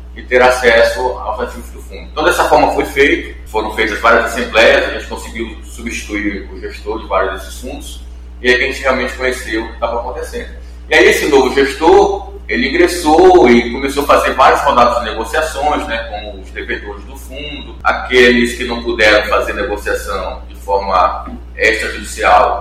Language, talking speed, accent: Portuguese, 175 wpm, Brazilian